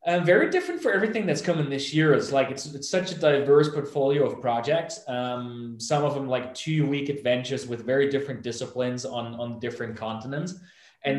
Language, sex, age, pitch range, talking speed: English, male, 20-39, 120-155 Hz, 195 wpm